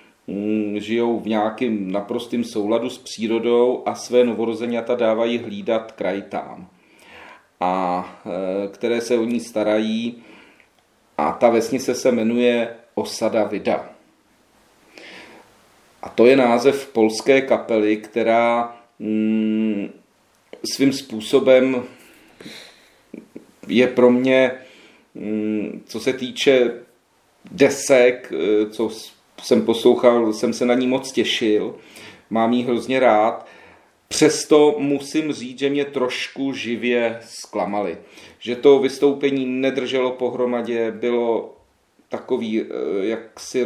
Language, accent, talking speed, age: Czech, native, 100 wpm, 40-59